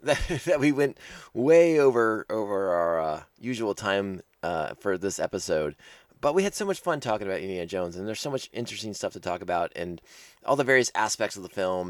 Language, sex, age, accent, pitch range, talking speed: English, male, 30-49, American, 95-130 Hz, 205 wpm